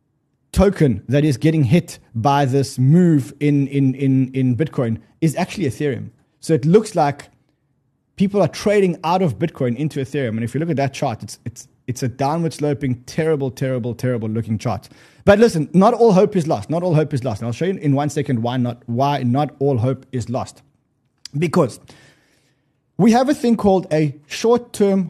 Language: English